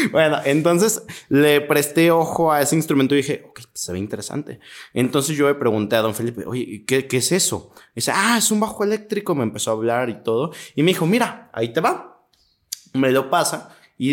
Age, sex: 20-39, male